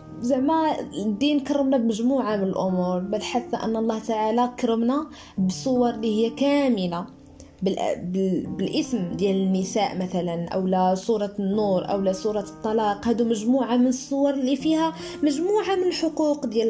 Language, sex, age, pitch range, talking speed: Arabic, female, 20-39, 200-245 Hz, 135 wpm